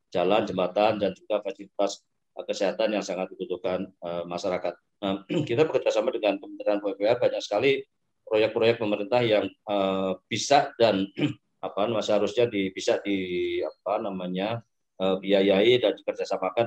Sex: male